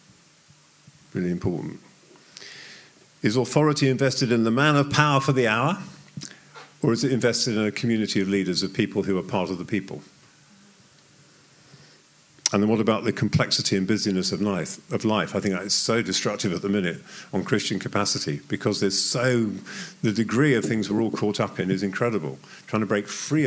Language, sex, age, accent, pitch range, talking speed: English, male, 50-69, British, 100-130 Hz, 185 wpm